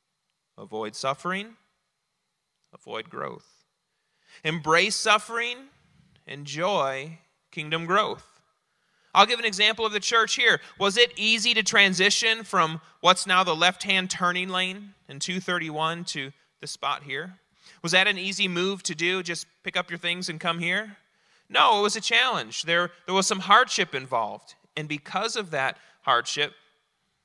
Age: 30-49